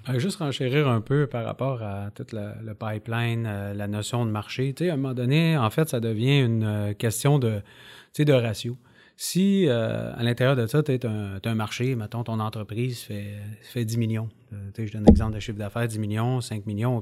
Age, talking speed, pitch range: 30-49, 215 wpm, 115-145 Hz